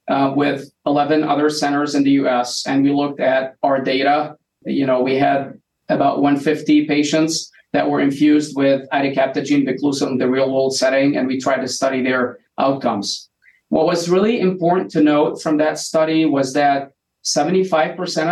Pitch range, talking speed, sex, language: 135-155 Hz, 165 wpm, male, English